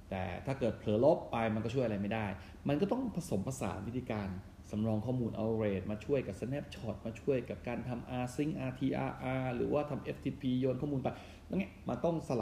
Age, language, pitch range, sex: 20-39, Thai, 95-135 Hz, male